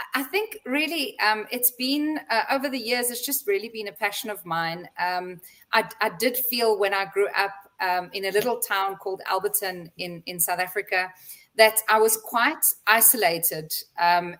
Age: 30-49